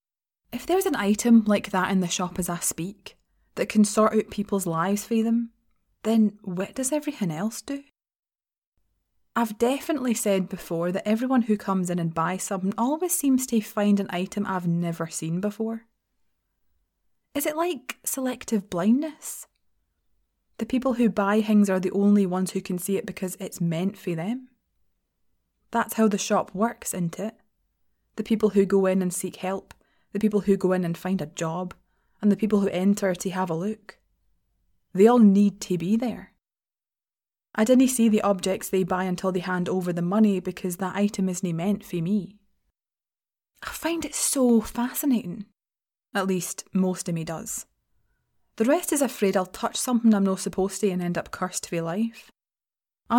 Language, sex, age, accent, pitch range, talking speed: English, female, 20-39, British, 185-230 Hz, 180 wpm